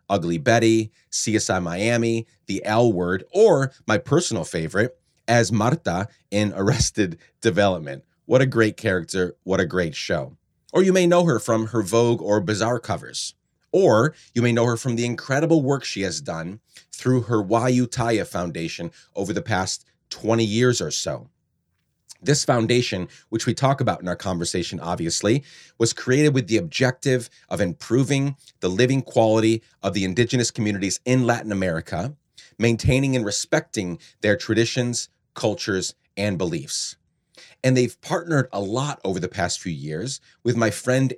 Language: English